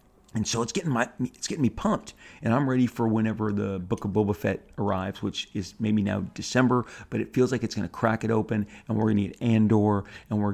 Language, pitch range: English, 105-125 Hz